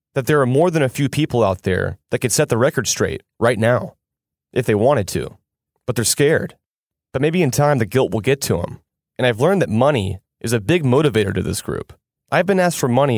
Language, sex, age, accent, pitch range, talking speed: English, male, 30-49, American, 115-150 Hz, 235 wpm